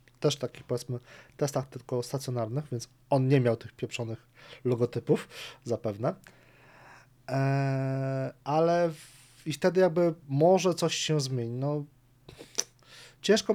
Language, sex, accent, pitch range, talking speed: Polish, male, native, 120-145 Hz, 115 wpm